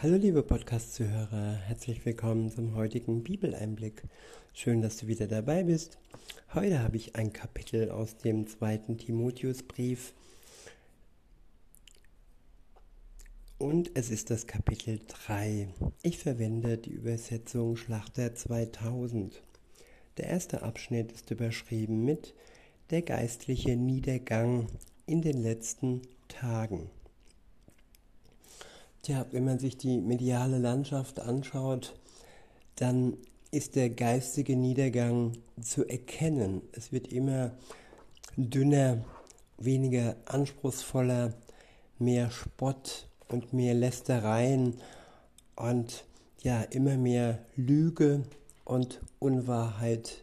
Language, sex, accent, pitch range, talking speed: German, male, German, 115-130 Hz, 95 wpm